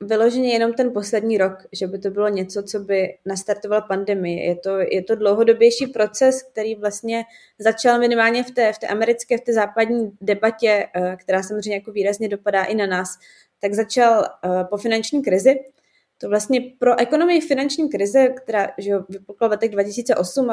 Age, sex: 20-39, female